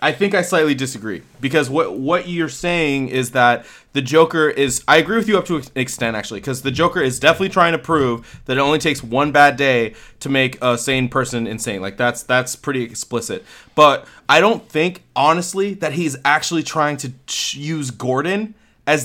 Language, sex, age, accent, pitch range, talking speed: English, male, 20-39, American, 130-170 Hz, 200 wpm